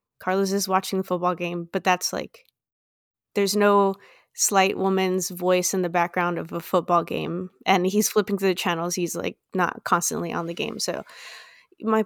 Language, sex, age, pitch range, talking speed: English, female, 20-39, 185-215 Hz, 180 wpm